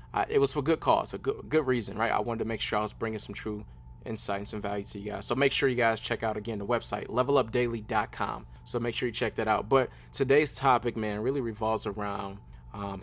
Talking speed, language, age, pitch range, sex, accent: 250 wpm, English, 20-39, 100-120 Hz, male, American